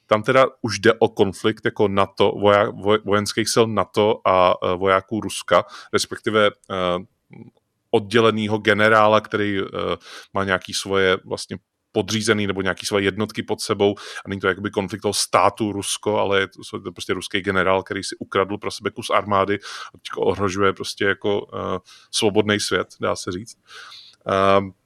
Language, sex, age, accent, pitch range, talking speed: Czech, male, 30-49, native, 100-115 Hz, 160 wpm